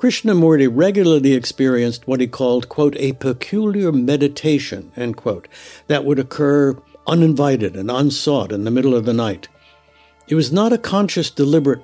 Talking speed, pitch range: 150 wpm, 115-145 Hz